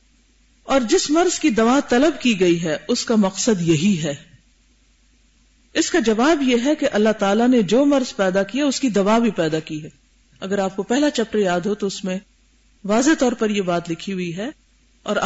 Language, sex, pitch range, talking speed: Urdu, female, 180-245 Hz, 210 wpm